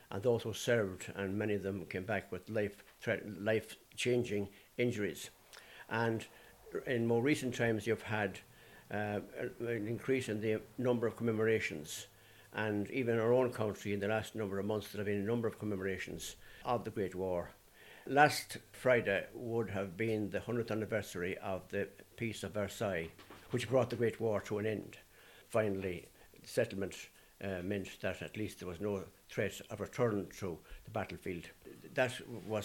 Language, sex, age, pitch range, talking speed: English, male, 60-79, 100-115 Hz, 165 wpm